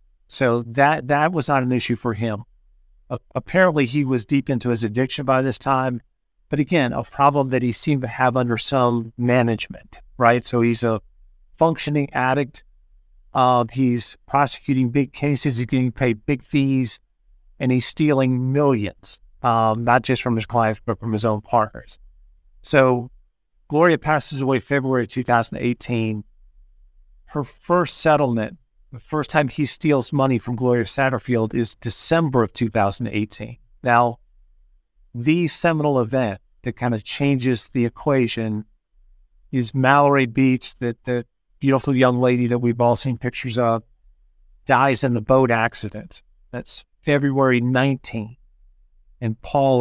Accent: American